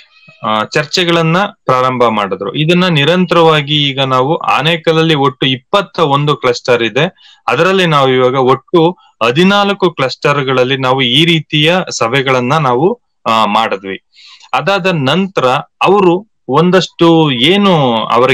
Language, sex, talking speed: English, male, 105 wpm